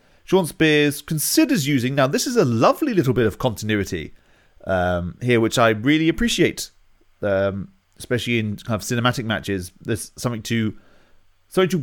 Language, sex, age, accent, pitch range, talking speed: English, male, 30-49, British, 100-140 Hz, 155 wpm